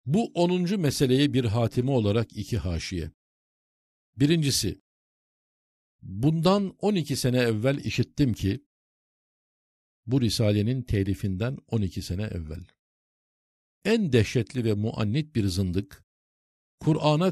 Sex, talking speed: male, 105 wpm